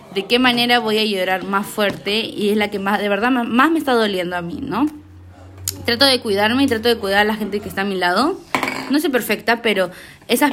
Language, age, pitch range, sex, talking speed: Spanish, 20-39, 190-240 Hz, female, 240 wpm